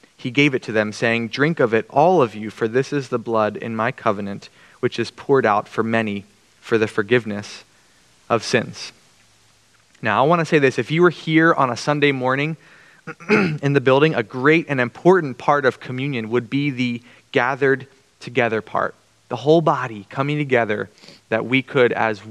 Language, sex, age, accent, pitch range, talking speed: English, male, 20-39, American, 115-140 Hz, 190 wpm